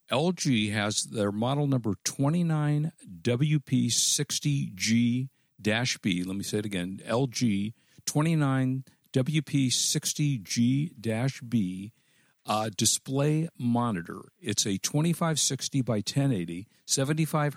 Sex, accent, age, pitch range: male, American, 50-69, 105-140 Hz